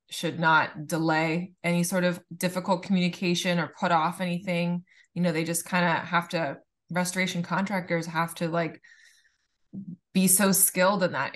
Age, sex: 20-39, female